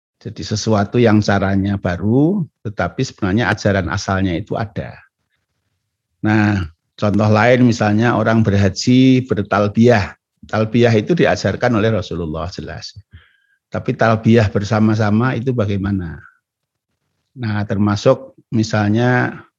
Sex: male